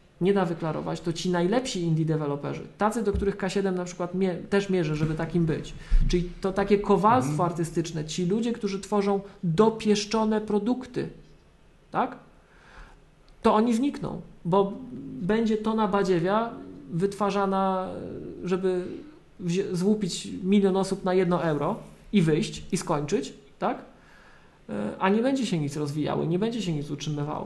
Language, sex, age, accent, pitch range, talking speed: Polish, male, 40-59, native, 160-200 Hz, 135 wpm